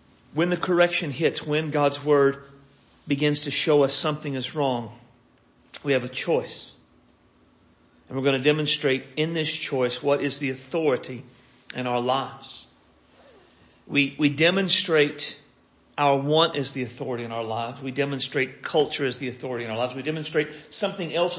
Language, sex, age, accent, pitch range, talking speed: English, male, 50-69, American, 125-150 Hz, 160 wpm